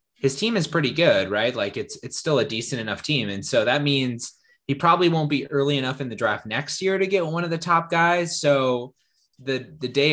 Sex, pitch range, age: male, 110-140 Hz, 20-39